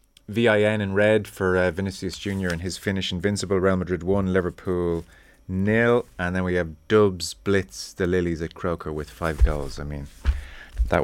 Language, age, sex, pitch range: English, 30-49, male, 80-100 Hz